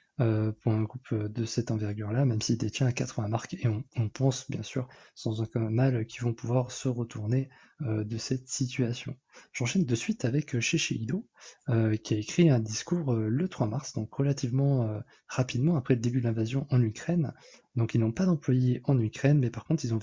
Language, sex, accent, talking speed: French, male, French, 200 wpm